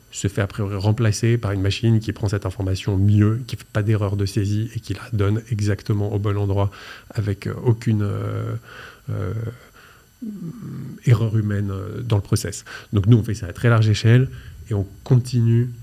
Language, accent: French, French